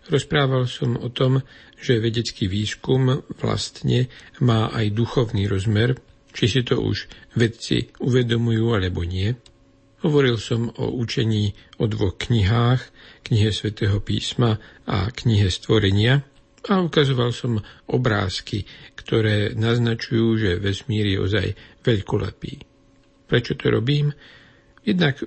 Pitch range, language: 105-125 Hz, Slovak